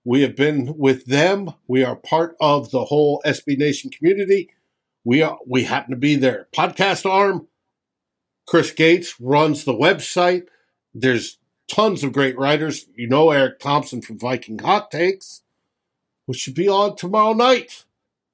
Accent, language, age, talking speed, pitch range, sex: American, English, 60-79, 155 wpm, 140-175 Hz, male